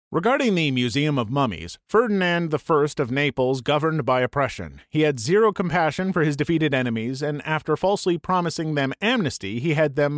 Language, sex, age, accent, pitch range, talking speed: English, male, 30-49, American, 130-195 Hz, 170 wpm